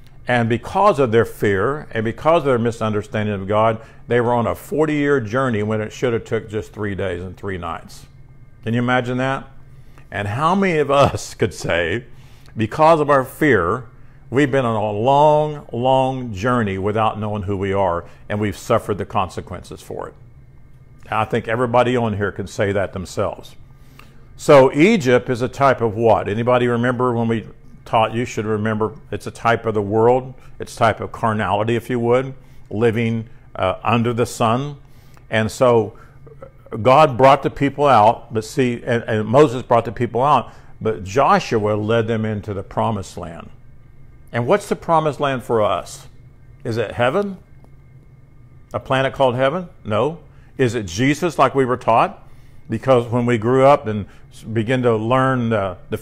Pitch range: 110-130 Hz